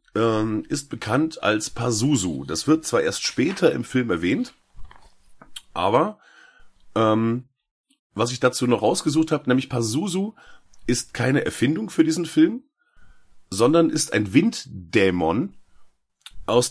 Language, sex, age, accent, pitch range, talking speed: German, male, 30-49, German, 115-160 Hz, 120 wpm